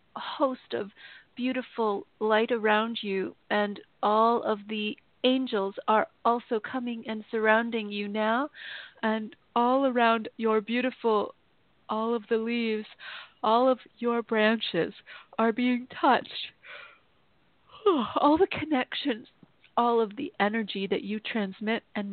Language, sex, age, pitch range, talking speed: English, female, 40-59, 195-235 Hz, 125 wpm